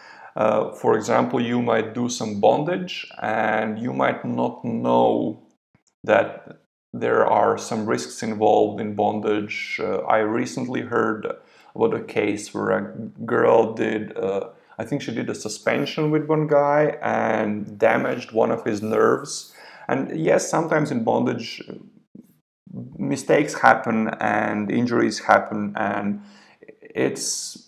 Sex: male